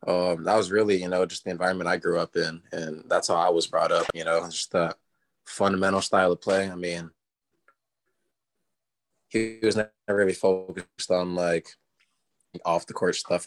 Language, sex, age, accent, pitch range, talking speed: English, male, 20-39, American, 85-95 Hz, 185 wpm